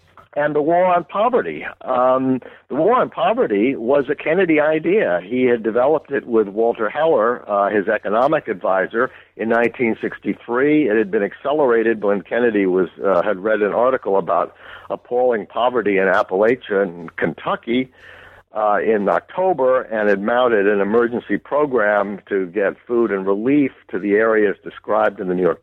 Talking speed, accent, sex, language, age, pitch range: 165 wpm, American, male, English, 60-79, 110-170 Hz